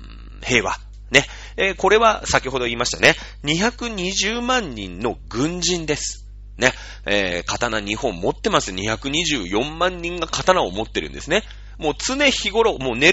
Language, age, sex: Japanese, 30-49, male